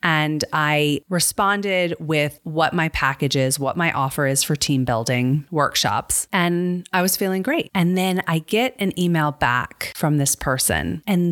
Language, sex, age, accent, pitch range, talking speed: English, female, 30-49, American, 140-180 Hz, 170 wpm